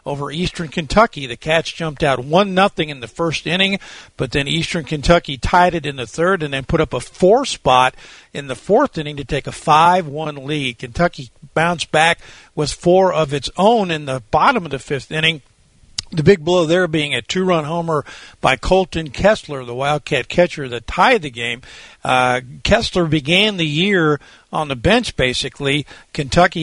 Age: 50-69